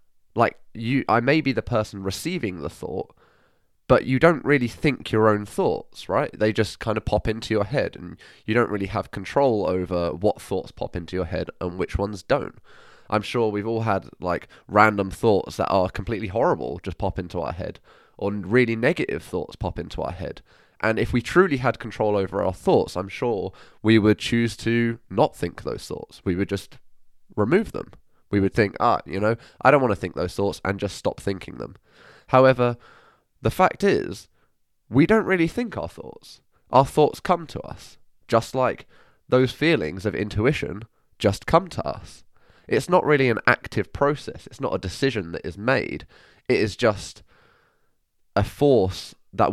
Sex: male